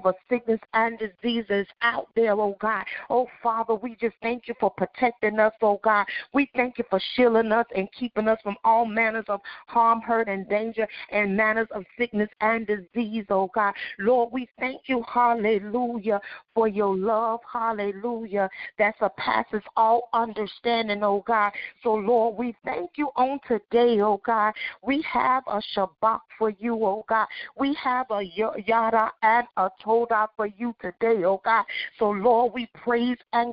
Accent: American